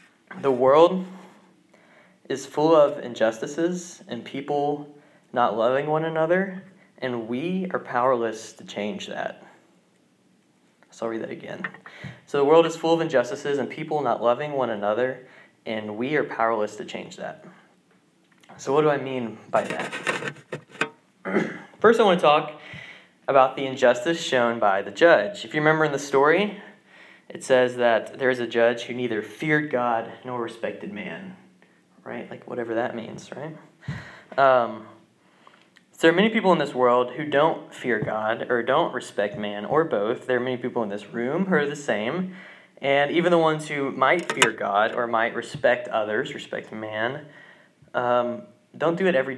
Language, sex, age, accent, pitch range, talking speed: English, male, 20-39, American, 120-160 Hz, 170 wpm